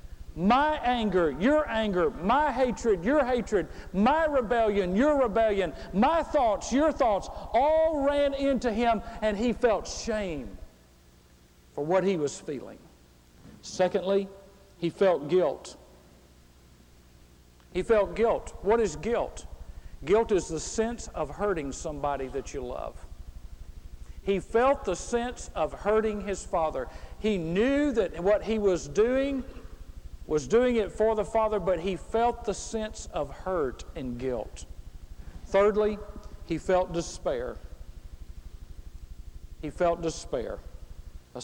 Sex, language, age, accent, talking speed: male, English, 50-69, American, 125 wpm